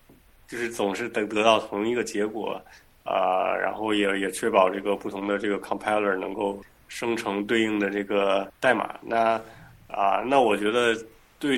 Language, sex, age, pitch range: Chinese, male, 20-39, 100-115 Hz